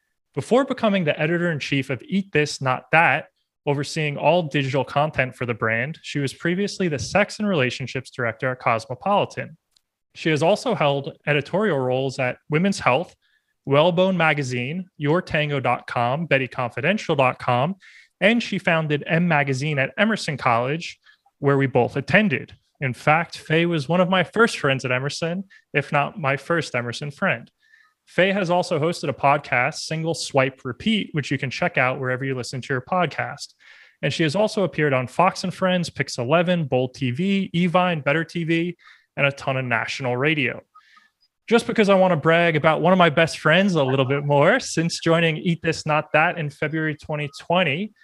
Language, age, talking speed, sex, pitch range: English, 20-39, 170 wpm, male, 135-185 Hz